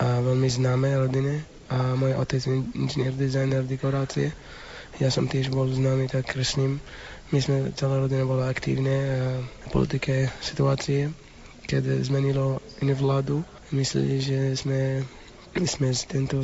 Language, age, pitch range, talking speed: Slovak, 20-39, 125-135 Hz, 140 wpm